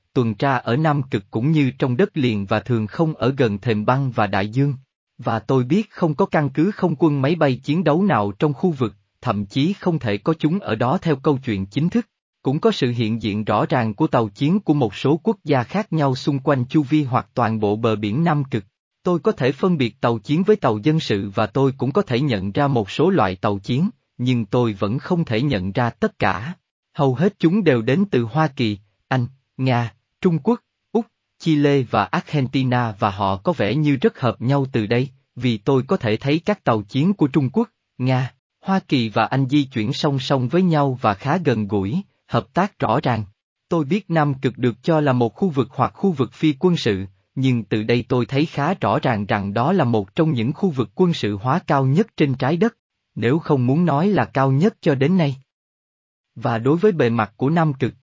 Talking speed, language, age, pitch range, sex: 230 wpm, Vietnamese, 20-39, 115-160 Hz, male